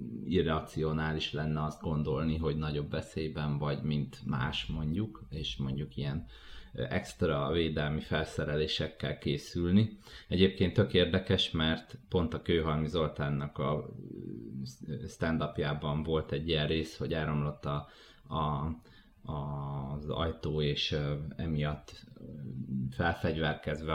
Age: 30-49